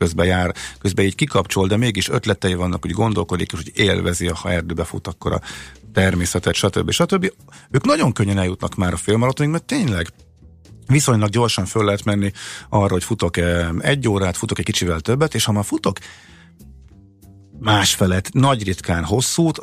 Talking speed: 170 wpm